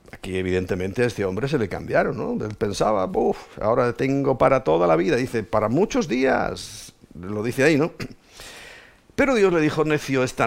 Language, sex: Spanish, male